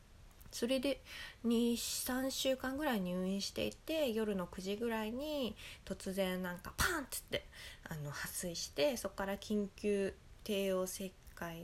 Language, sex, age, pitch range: Japanese, female, 20-39, 180-245 Hz